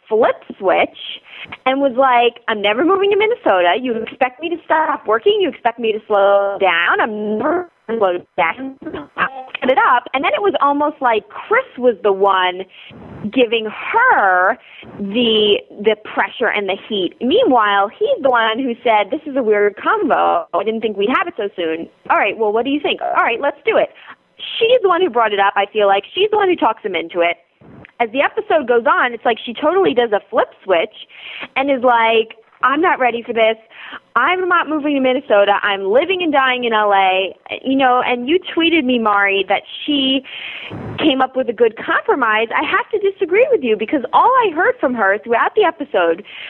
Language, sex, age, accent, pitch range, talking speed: English, female, 30-49, American, 215-315 Hz, 205 wpm